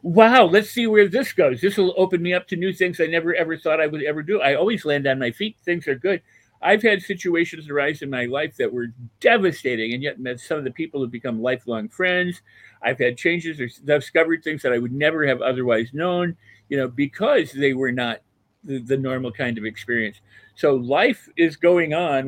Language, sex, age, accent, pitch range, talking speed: English, male, 50-69, American, 130-175 Hz, 220 wpm